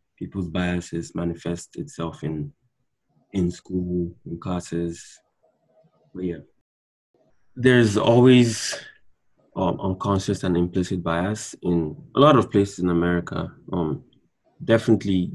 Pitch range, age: 85-105 Hz, 20-39